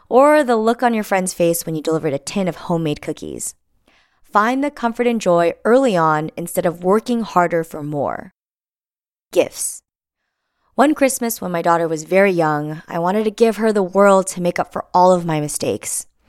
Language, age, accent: English, 20-39, American